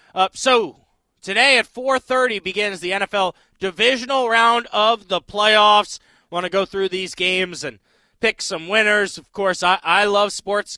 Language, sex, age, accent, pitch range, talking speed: English, male, 20-39, American, 190-255 Hz, 160 wpm